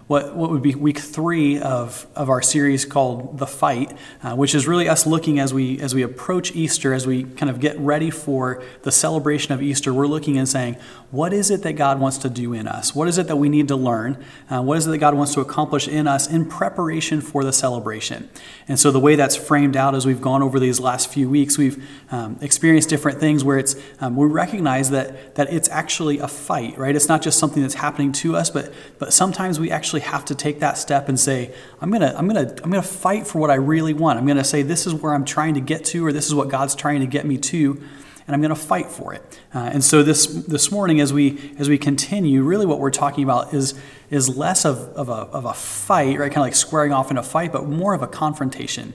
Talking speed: 250 wpm